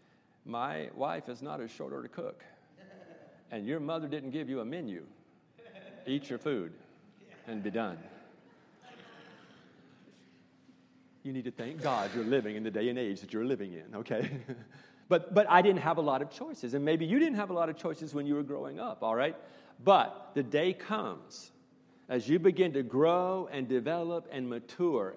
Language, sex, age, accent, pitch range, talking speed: English, male, 50-69, American, 130-175 Hz, 180 wpm